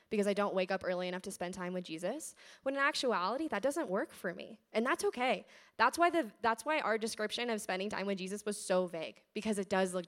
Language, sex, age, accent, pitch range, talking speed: English, female, 10-29, American, 185-220 Hz, 250 wpm